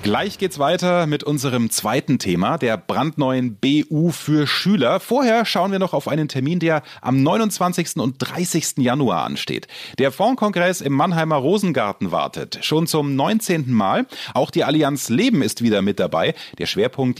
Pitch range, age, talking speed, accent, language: 125-175 Hz, 30-49, 160 wpm, German, German